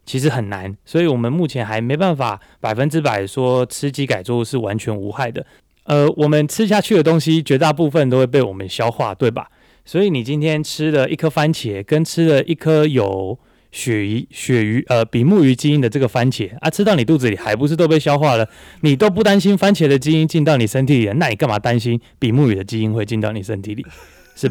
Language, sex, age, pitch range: Chinese, male, 20-39, 115-160 Hz